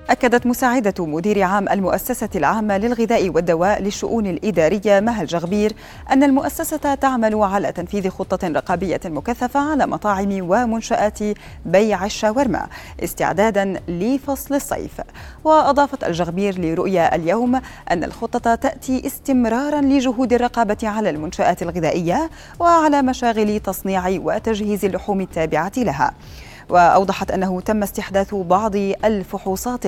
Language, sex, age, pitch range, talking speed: Arabic, female, 30-49, 190-255 Hz, 110 wpm